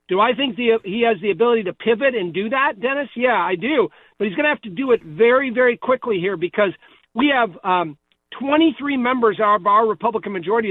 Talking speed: 220 wpm